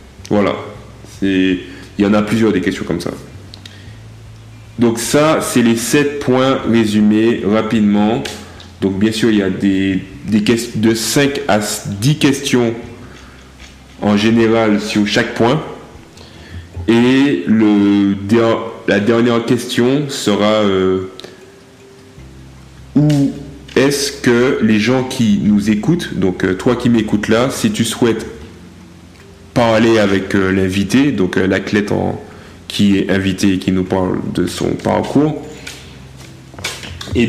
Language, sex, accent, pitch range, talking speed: French, male, French, 95-120 Hz, 130 wpm